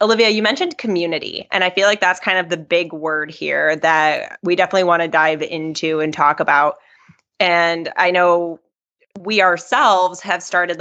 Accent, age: American, 20-39